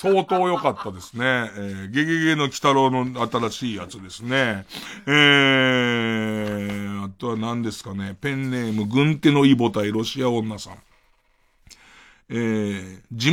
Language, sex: Japanese, male